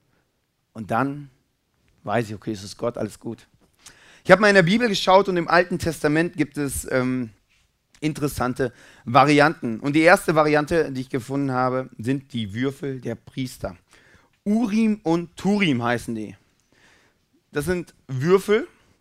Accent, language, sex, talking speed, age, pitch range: German, German, male, 150 wpm, 30-49, 120-150 Hz